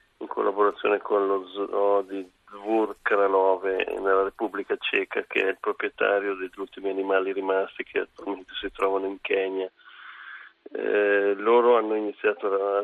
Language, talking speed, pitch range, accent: Italian, 140 wpm, 100-110 Hz, native